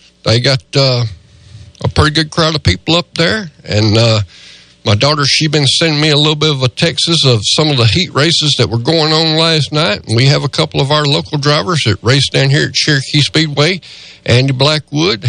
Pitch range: 120-160 Hz